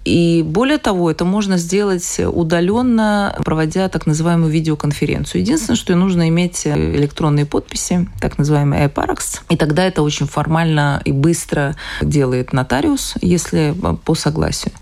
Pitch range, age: 140-175 Hz, 20-39